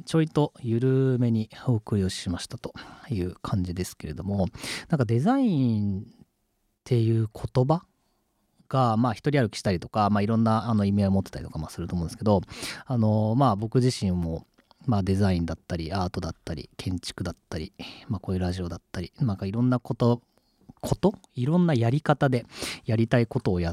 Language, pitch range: Japanese, 95-130 Hz